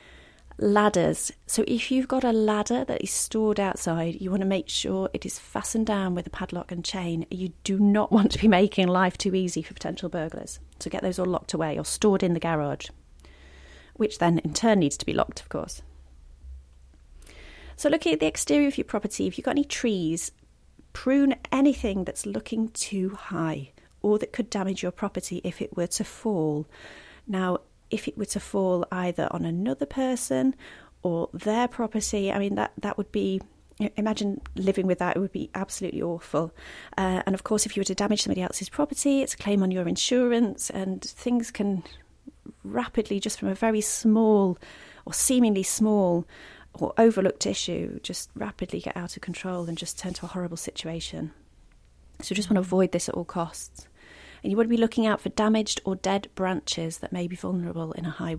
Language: English